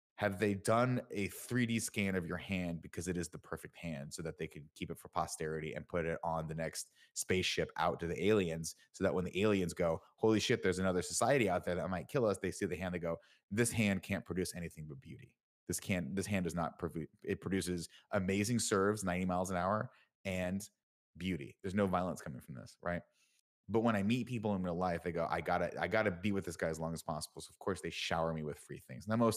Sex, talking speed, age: male, 245 wpm, 20-39